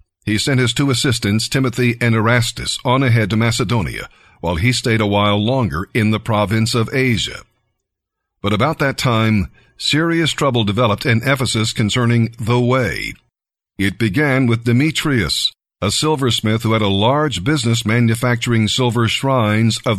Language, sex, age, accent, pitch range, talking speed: English, male, 50-69, American, 110-130 Hz, 150 wpm